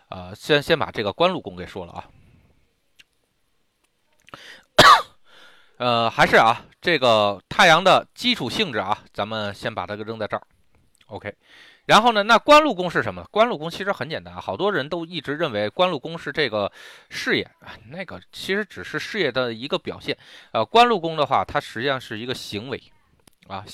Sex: male